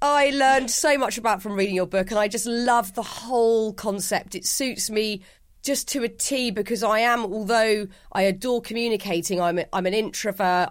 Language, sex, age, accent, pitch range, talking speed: English, female, 30-49, British, 190-240 Hz, 195 wpm